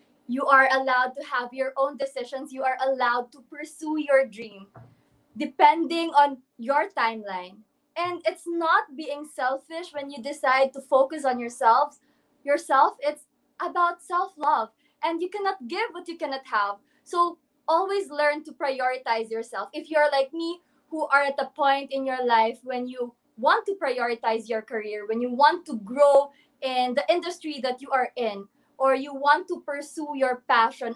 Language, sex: English, female